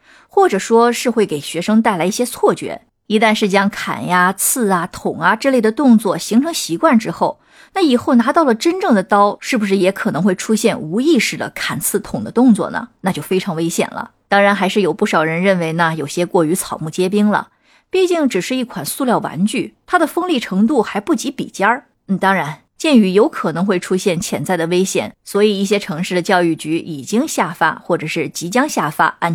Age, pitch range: 20-39, 175-235 Hz